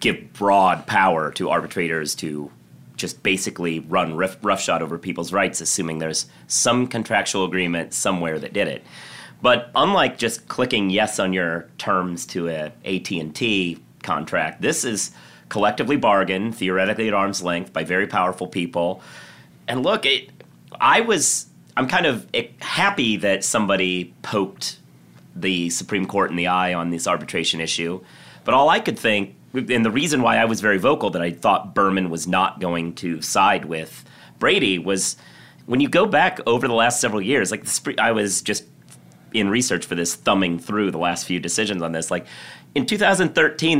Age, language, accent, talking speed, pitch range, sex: 30-49, English, American, 170 wpm, 85-105 Hz, male